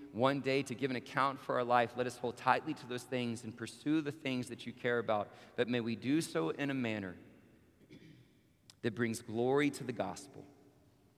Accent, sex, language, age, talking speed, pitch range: American, male, English, 40-59, 205 wpm, 100-130 Hz